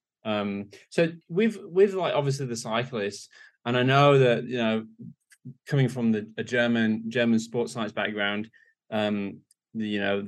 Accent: British